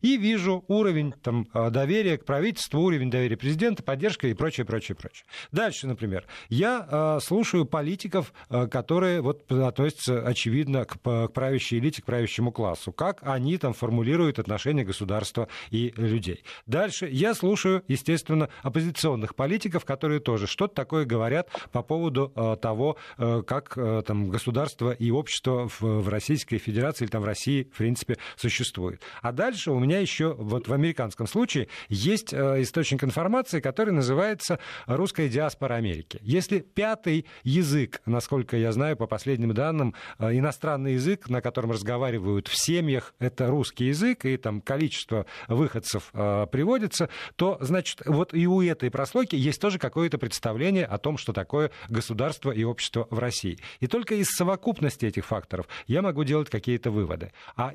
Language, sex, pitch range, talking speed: Russian, male, 115-160 Hz, 145 wpm